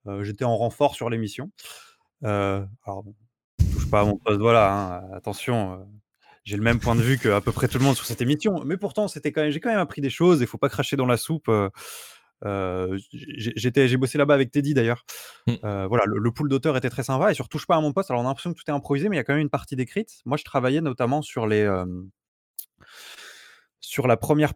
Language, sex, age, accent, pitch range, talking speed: French, male, 20-39, French, 105-135 Hz, 255 wpm